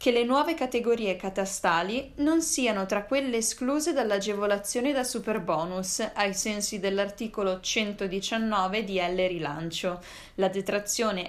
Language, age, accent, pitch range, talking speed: Italian, 20-39, native, 190-235 Hz, 115 wpm